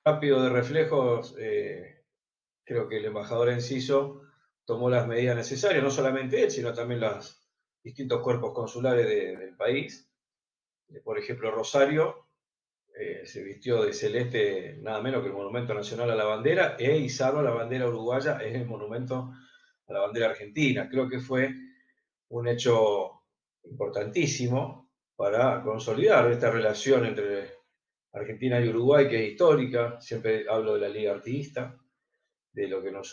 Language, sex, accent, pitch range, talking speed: Spanish, male, Argentinian, 120-175 Hz, 145 wpm